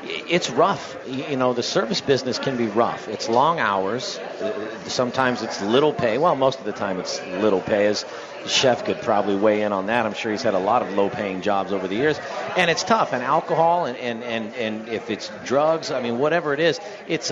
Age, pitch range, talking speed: 40-59, 110-135 Hz, 215 wpm